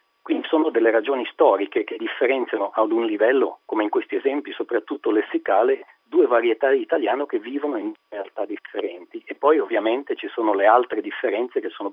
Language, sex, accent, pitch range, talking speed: Italian, male, native, 330-435 Hz, 175 wpm